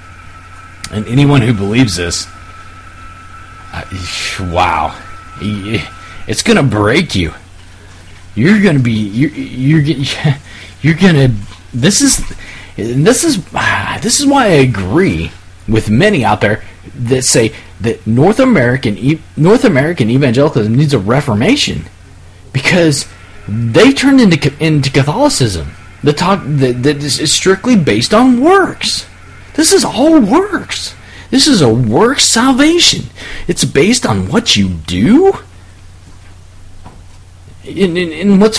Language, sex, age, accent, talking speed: English, male, 40-59, American, 115 wpm